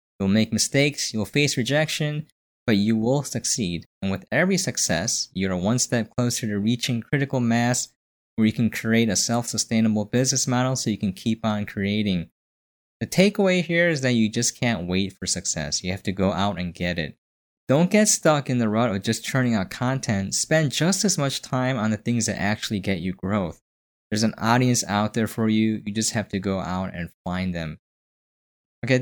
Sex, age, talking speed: male, 20-39, 200 wpm